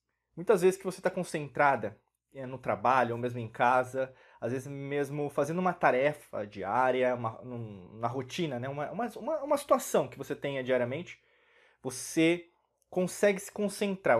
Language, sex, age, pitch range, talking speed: Portuguese, male, 20-39, 135-180 Hz, 160 wpm